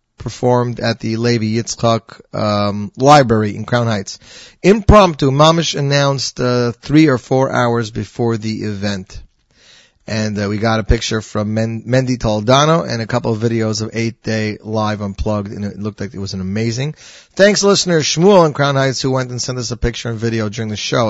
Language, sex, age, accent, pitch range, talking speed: English, male, 40-59, American, 110-145 Hz, 190 wpm